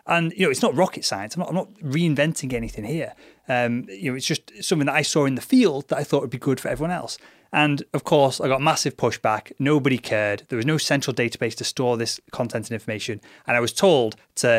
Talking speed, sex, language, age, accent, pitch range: 245 wpm, male, English, 30-49, British, 115-145 Hz